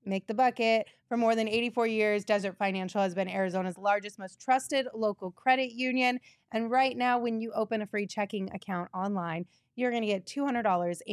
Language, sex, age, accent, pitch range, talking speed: English, female, 20-39, American, 185-230 Hz, 190 wpm